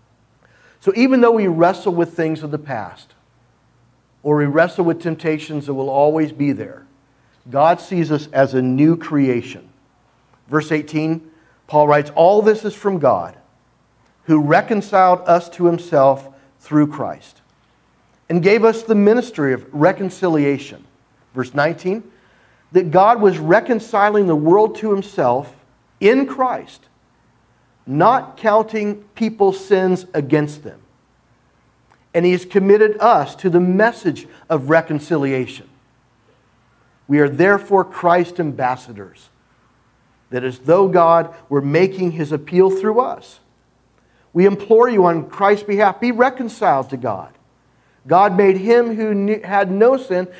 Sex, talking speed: male, 130 wpm